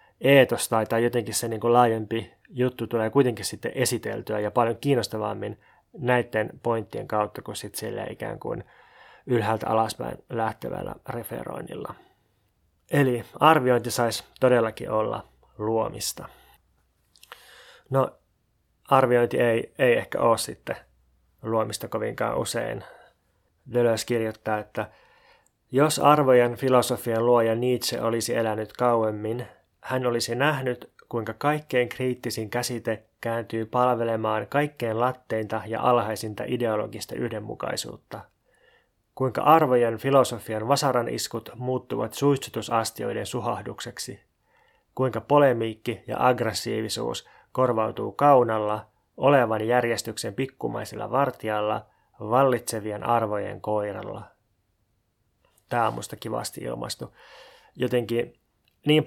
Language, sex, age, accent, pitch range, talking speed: Finnish, male, 20-39, native, 110-125 Hz, 95 wpm